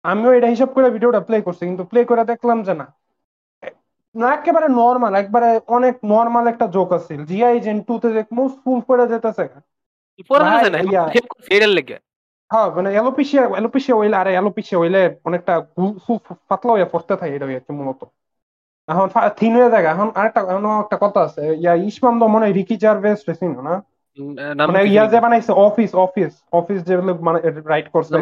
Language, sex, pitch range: Bengali, male, 170-235 Hz